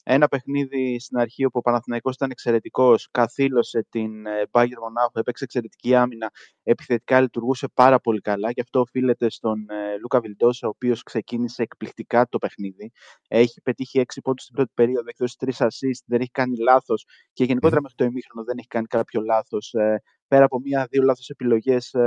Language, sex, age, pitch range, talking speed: Greek, male, 20-39, 115-135 Hz, 170 wpm